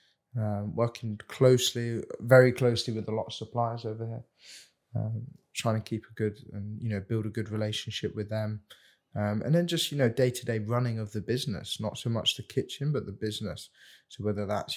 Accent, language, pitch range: British, English, 105-125 Hz